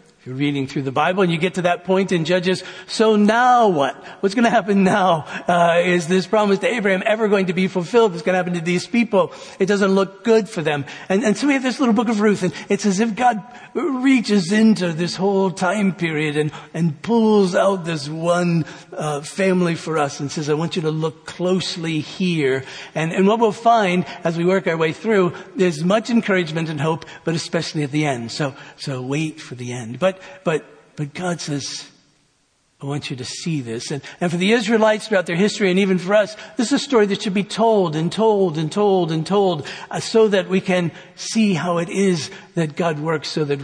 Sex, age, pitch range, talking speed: male, 50-69, 155-205 Hz, 225 wpm